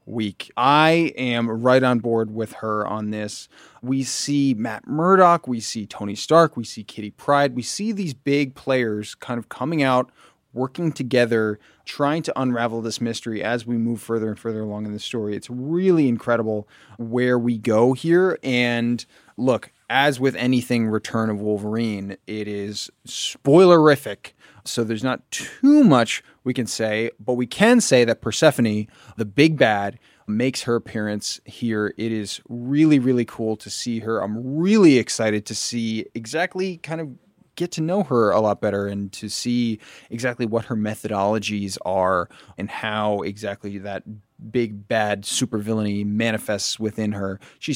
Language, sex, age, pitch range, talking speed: English, male, 20-39, 105-130 Hz, 165 wpm